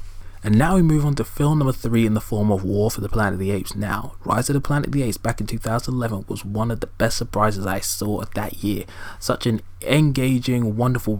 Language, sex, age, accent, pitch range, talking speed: English, male, 20-39, British, 100-120 Hz, 240 wpm